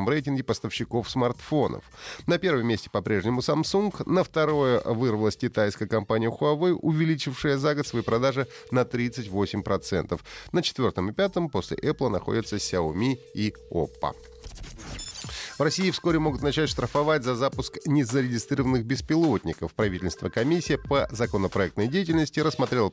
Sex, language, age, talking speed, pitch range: male, Russian, 30-49, 125 wpm, 105-145 Hz